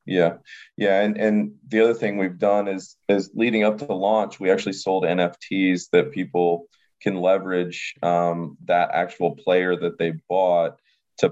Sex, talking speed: male, 170 wpm